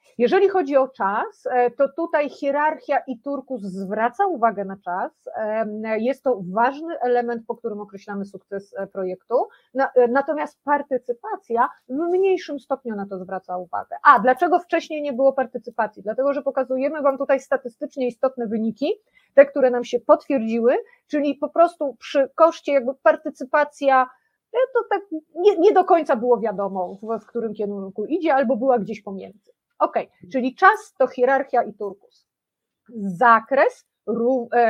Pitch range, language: 220-295 Hz, Polish